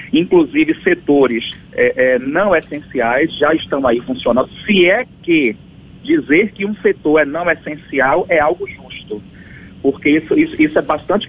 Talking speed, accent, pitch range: 145 wpm, Brazilian, 150-215 Hz